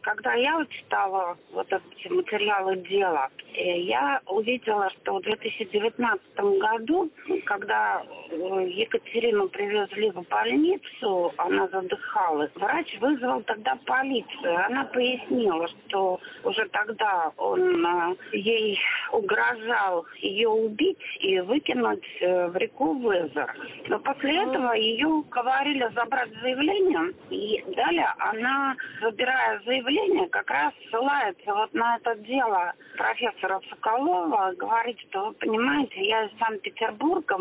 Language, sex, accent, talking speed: Russian, female, native, 105 wpm